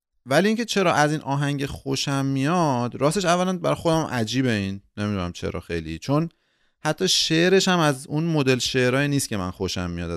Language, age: Persian, 30-49